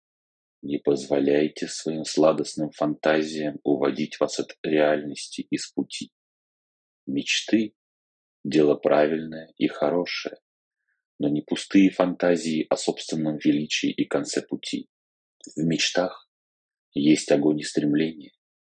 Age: 40-59